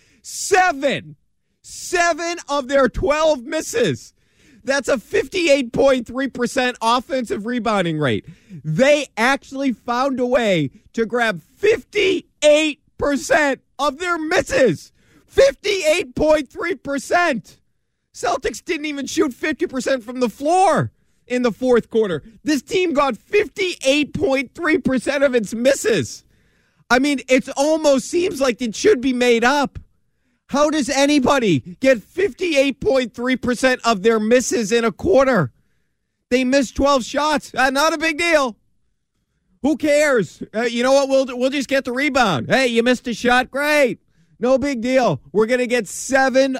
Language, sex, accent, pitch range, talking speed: English, male, American, 235-285 Hz, 130 wpm